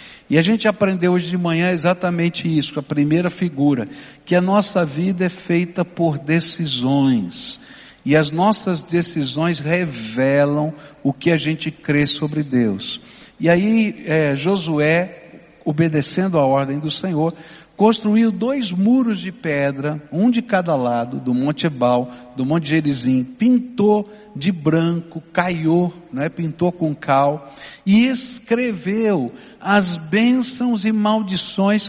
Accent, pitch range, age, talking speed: Brazilian, 165-215 Hz, 60-79, 130 wpm